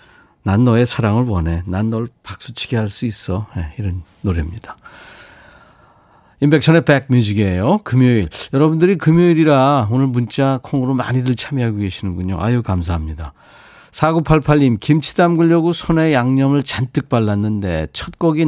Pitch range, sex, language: 105-145 Hz, male, Korean